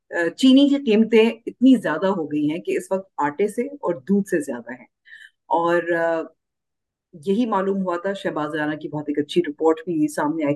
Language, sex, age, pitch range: Urdu, female, 50-69, 155-195 Hz